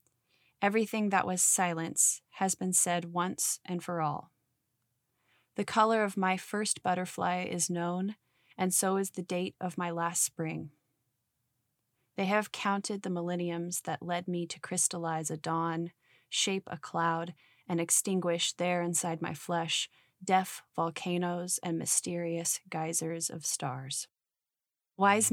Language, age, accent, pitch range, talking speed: English, 20-39, American, 165-185 Hz, 135 wpm